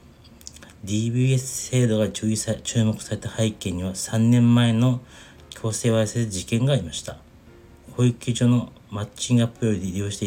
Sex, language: male, Japanese